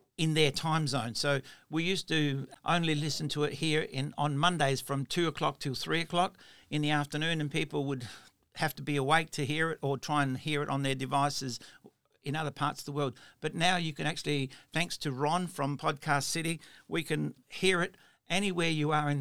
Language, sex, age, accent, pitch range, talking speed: English, male, 60-79, Australian, 135-155 Hz, 210 wpm